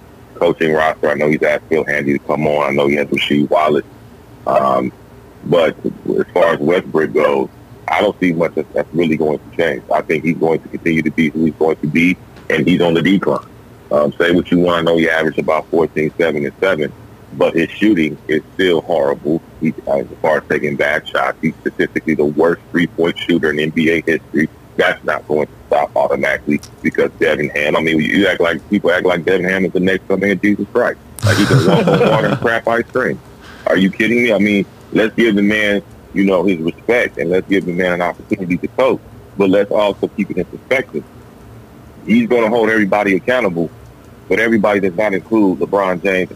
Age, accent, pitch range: 30-49, American, 80-100 Hz